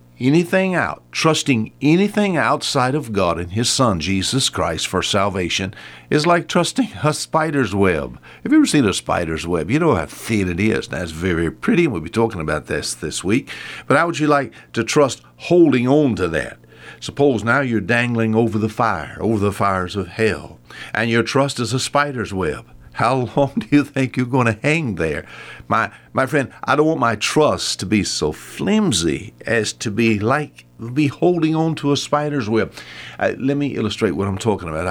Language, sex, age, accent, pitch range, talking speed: English, male, 60-79, American, 95-140 Hz, 200 wpm